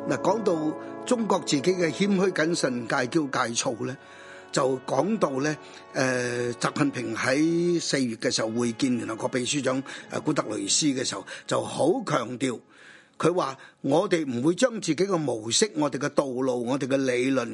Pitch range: 130-190 Hz